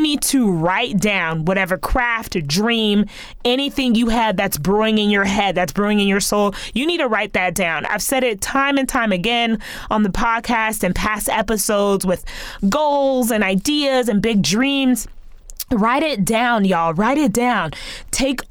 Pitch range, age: 190-250 Hz, 20-39